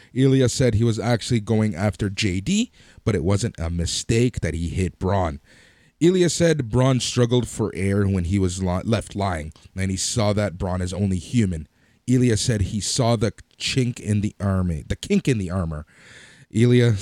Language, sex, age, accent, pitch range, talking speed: English, male, 30-49, American, 90-120 Hz, 185 wpm